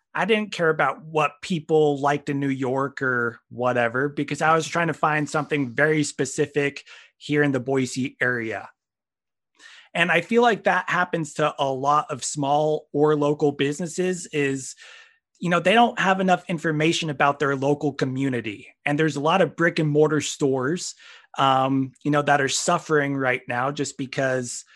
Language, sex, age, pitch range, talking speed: English, male, 30-49, 140-180 Hz, 170 wpm